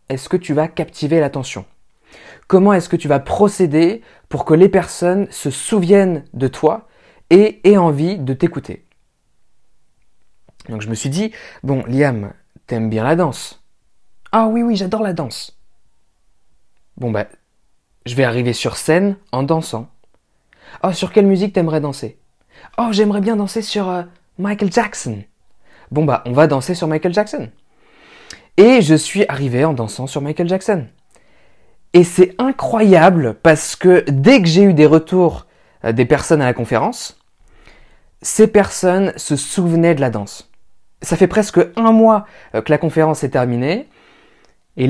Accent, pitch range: French, 135-190 Hz